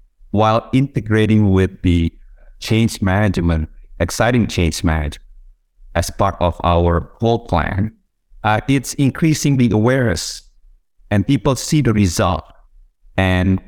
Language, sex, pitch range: English, male, 85-115 Hz